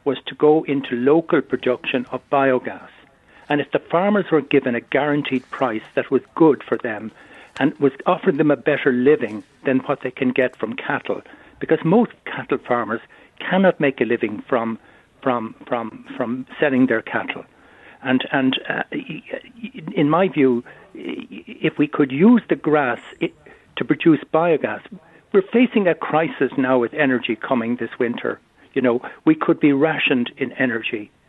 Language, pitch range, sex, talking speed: English, 130-165 Hz, male, 160 wpm